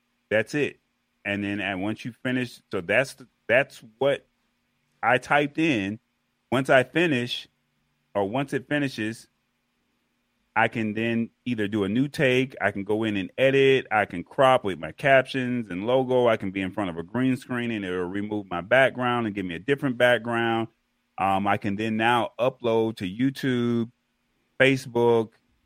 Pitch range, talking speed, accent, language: 100-125 Hz, 175 wpm, American, English